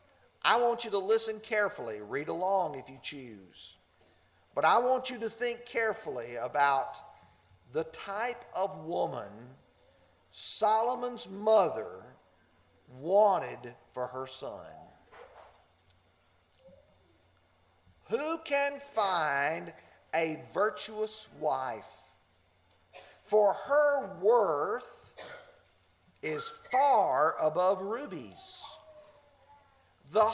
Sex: male